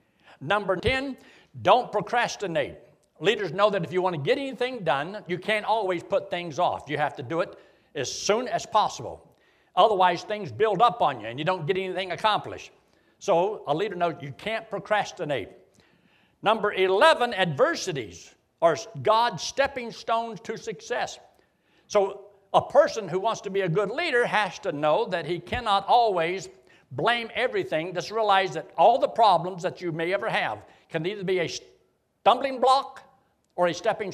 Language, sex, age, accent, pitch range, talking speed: English, male, 60-79, American, 175-230 Hz, 170 wpm